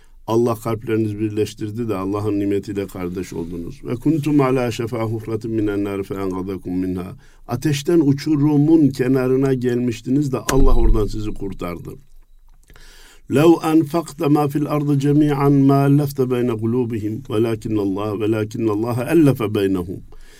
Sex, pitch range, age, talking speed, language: male, 105-145 Hz, 50-69, 95 wpm, Turkish